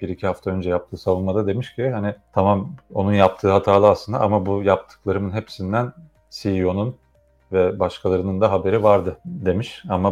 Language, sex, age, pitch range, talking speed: Turkish, male, 40-59, 95-110 Hz, 155 wpm